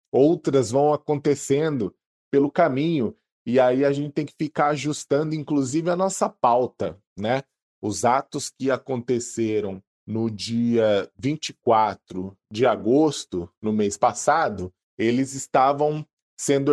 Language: Portuguese